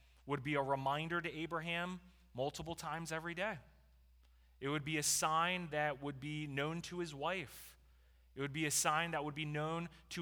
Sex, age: male, 30-49